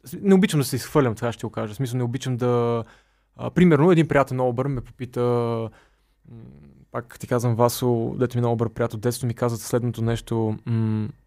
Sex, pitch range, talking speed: male, 115-135 Hz, 180 wpm